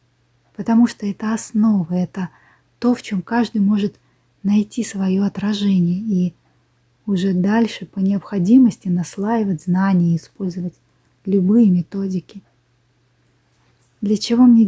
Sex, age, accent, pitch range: female, 20-39, native, 175-215 Hz